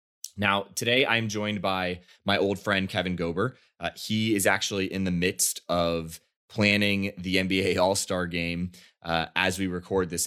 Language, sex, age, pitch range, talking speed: English, male, 20-39, 85-100 Hz, 165 wpm